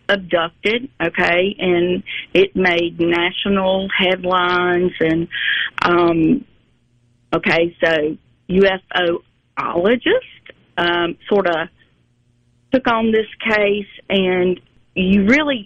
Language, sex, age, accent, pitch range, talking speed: English, female, 40-59, American, 175-205 Hz, 85 wpm